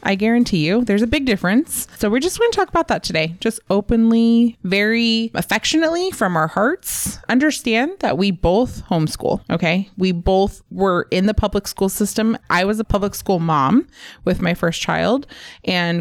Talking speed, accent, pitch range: 185 wpm, American, 165-220 Hz